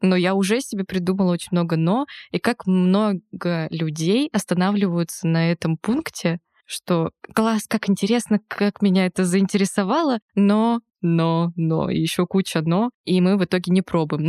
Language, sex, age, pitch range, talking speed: Russian, female, 20-39, 175-215 Hz, 150 wpm